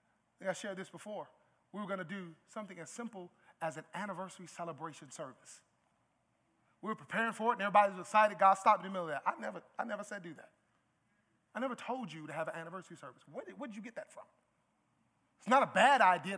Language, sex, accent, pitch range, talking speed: English, male, American, 155-210 Hz, 220 wpm